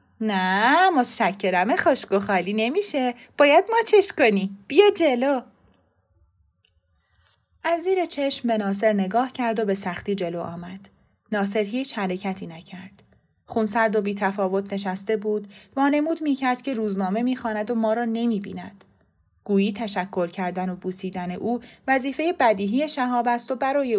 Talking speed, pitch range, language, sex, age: 140 wpm, 190-235 Hz, Persian, female, 30-49